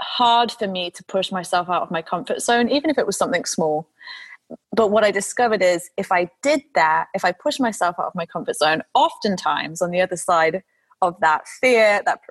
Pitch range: 175-215 Hz